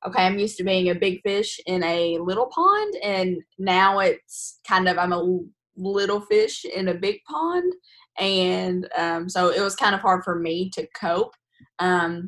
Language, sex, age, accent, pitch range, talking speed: English, female, 10-29, American, 175-205 Hz, 185 wpm